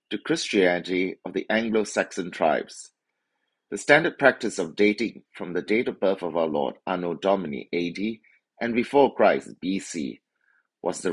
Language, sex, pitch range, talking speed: English, male, 85-115 Hz, 150 wpm